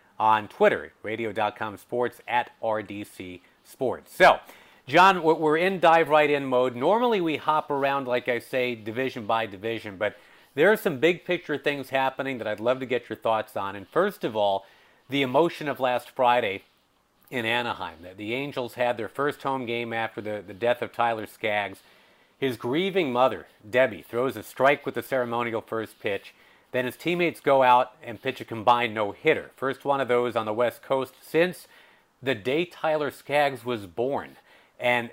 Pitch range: 110-140 Hz